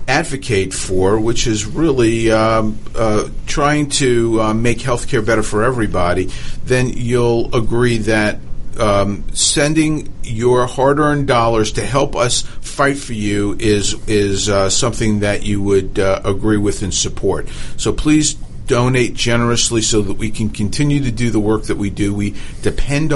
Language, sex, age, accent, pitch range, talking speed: English, male, 50-69, American, 105-130 Hz, 160 wpm